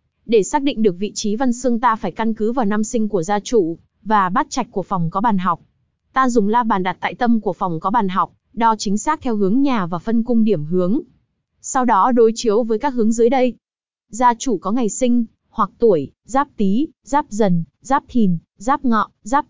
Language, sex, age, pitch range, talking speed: Vietnamese, female, 20-39, 205-255 Hz, 230 wpm